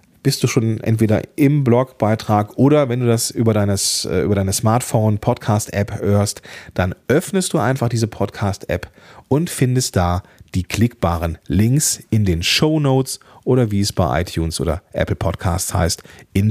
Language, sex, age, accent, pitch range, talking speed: German, male, 40-59, German, 95-135 Hz, 155 wpm